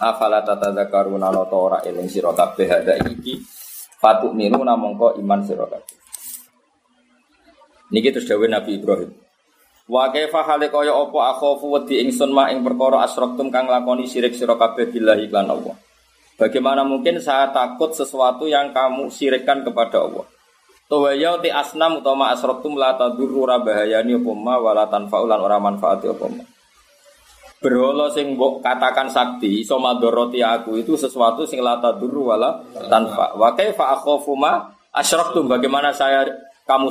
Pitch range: 120-145 Hz